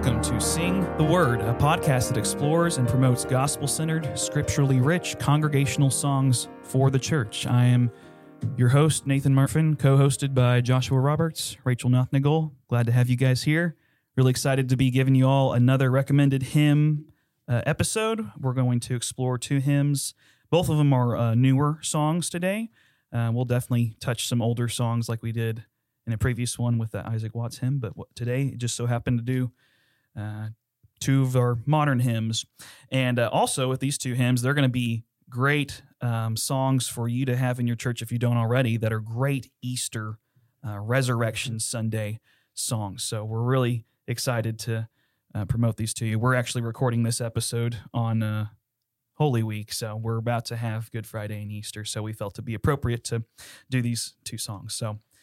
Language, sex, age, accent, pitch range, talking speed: English, male, 30-49, American, 115-135 Hz, 185 wpm